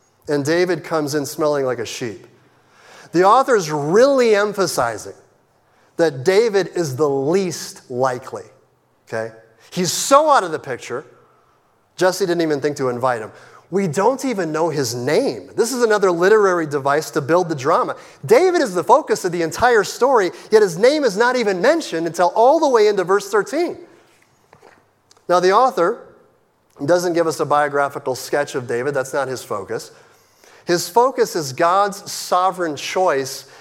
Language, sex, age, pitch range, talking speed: English, male, 30-49, 155-215 Hz, 160 wpm